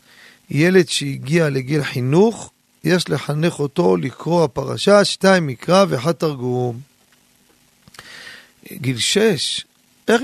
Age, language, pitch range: 40-59, Hebrew, 135-190 Hz